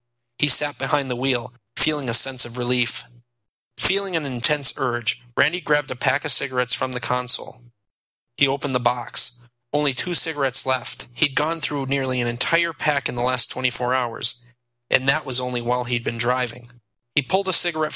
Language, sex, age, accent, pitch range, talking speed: English, male, 30-49, American, 120-140 Hz, 185 wpm